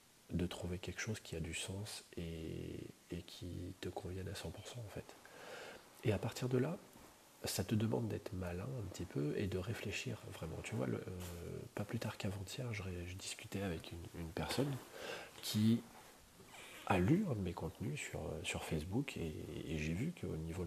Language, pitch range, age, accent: French, 85-110 Hz, 40-59, French